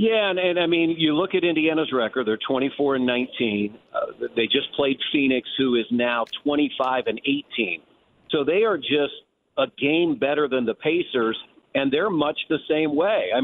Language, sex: English, male